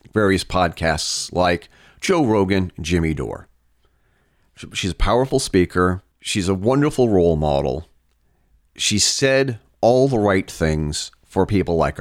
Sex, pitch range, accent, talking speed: male, 80-115 Hz, American, 125 wpm